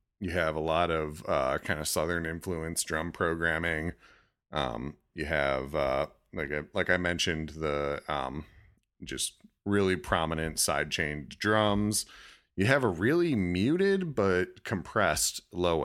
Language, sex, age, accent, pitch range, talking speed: English, male, 40-59, American, 75-100 Hz, 140 wpm